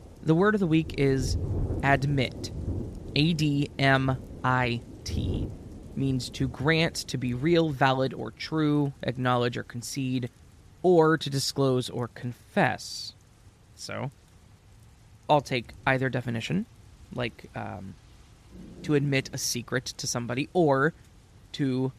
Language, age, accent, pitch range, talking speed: English, 20-39, American, 115-150 Hz, 110 wpm